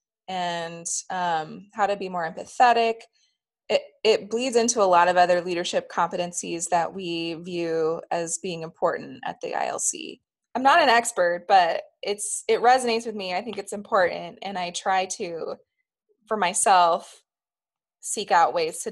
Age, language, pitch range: 20-39, English, 180-220 Hz